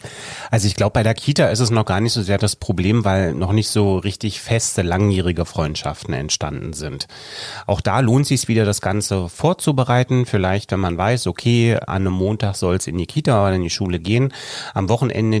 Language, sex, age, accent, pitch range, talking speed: German, male, 30-49, German, 95-120 Hz, 205 wpm